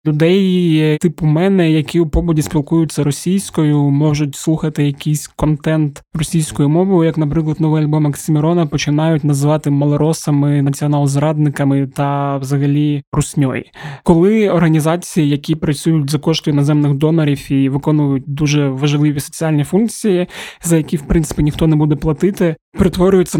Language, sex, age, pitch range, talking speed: Ukrainian, male, 20-39, 145-165 Hz, 125 wpm